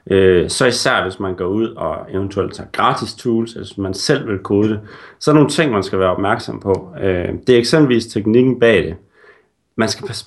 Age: 30-49